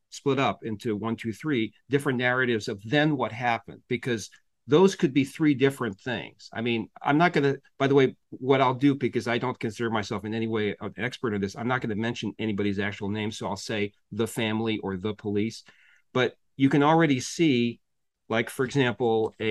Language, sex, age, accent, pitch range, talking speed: English, male, 40-59, American, 105-140 Hz, 205 wpm